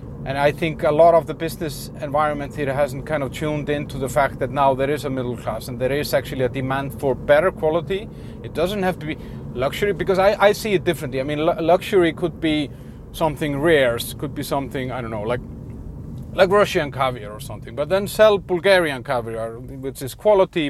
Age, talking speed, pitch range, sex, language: 30-49, 215 wpm, 125-150 Hz, male, English